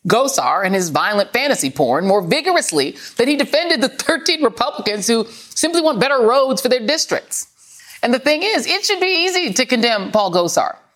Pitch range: 200-310 Hz